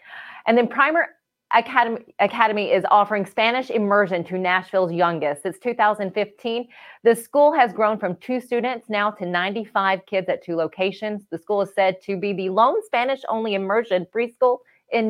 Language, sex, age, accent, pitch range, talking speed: English, female, 30-49, American, 185-235 Hz, 160 wpm